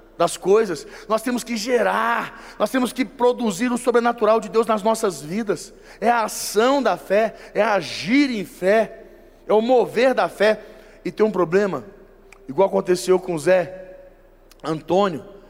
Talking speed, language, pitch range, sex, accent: 160 wpm, Portuguese, 195-235 Hz, male, Brazilian